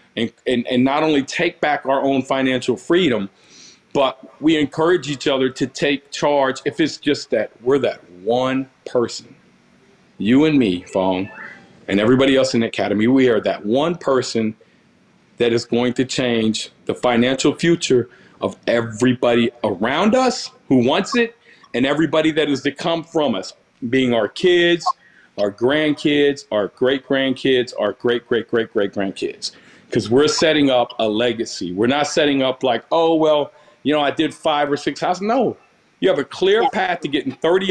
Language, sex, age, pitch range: English, male, 40-59, 130-180 Hz